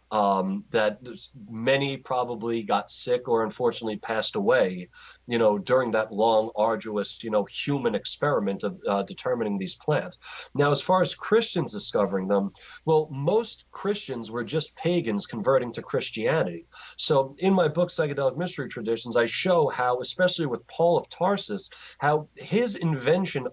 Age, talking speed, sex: 40-59, 150 wpm, male